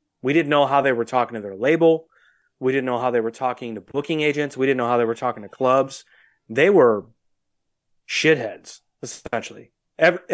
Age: 30-49